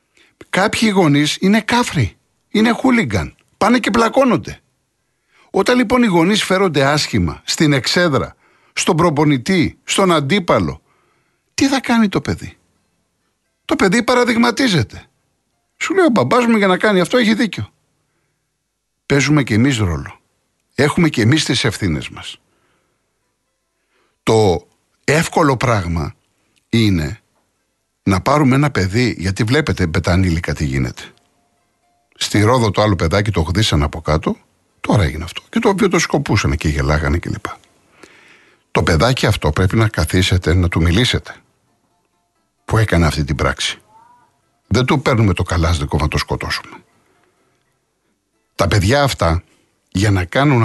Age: 60-79